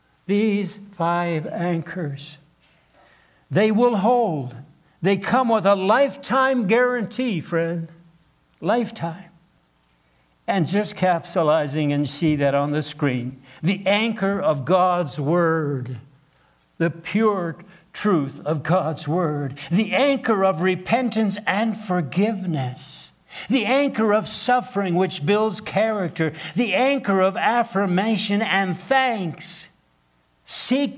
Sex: male